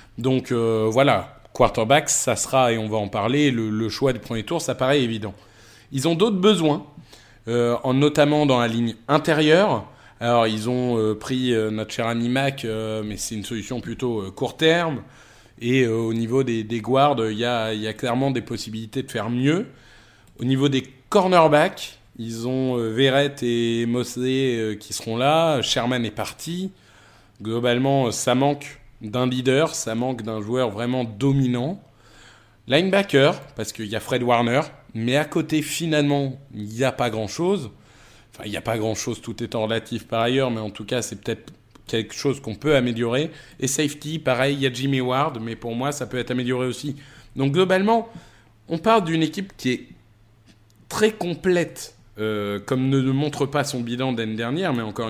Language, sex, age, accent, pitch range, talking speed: French, male, 20-39, French, 115-140 Hz, 190 wpm